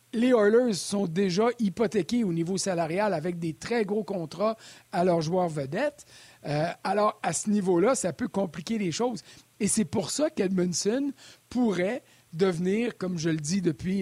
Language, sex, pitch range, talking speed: French, male, 175-225 Hz, 165 wpm